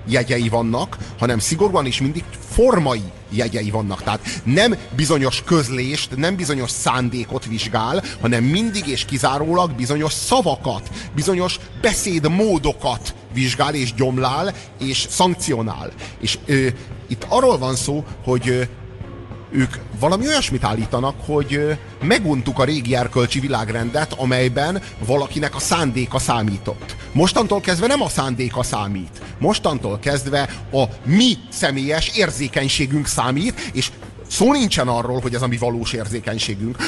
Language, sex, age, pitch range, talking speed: Hungarian, male, 30-49, 120-150 Hz, 120 wpm